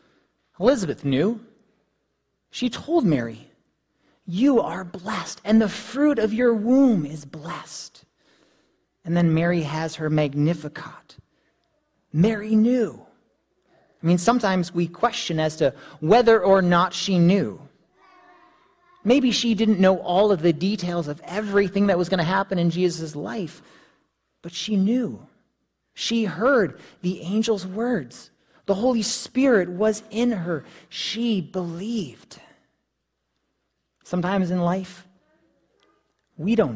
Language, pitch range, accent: English, 160-220 Hz, American